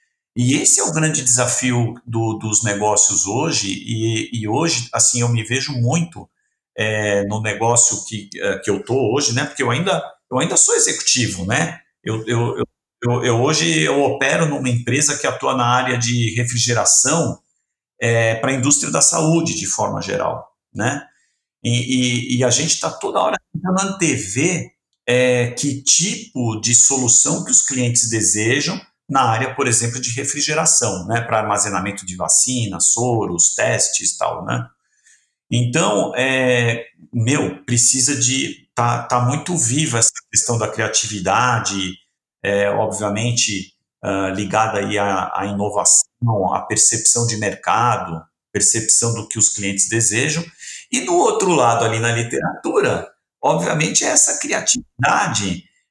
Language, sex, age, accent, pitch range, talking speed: Portuguese, male, 50-69, Brazilian, 110-130 Hz, 145 wpm